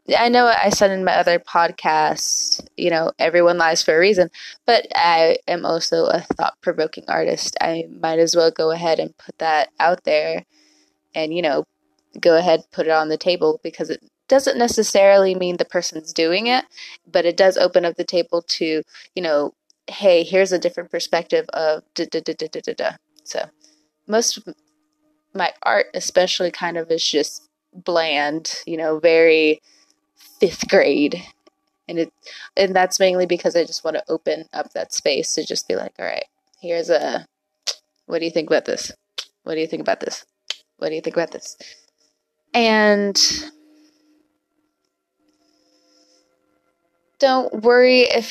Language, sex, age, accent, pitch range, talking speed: English, female, 20-39, American, 165-245 Hz, 160 wpm